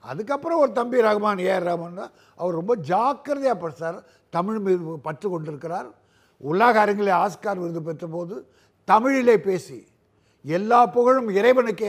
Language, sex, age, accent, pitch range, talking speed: Tamil, male, 50-69, native, 155-215 Hz, 130 wpm